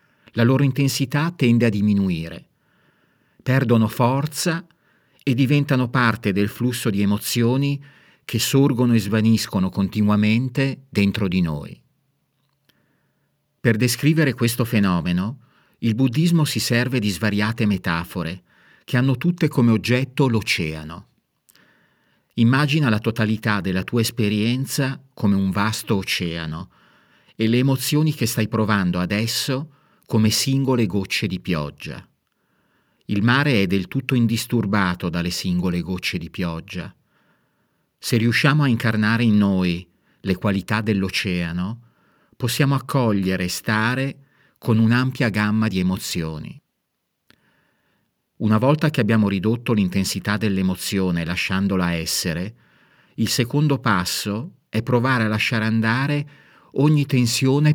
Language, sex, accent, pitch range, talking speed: Italian, male, native, 100-130 Hz, 115 wpm